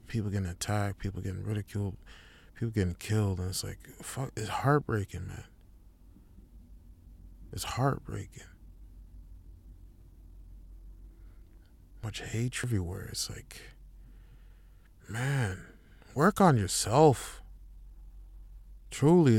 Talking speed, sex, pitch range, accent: 85 wpm, male, 85-120 Hz, American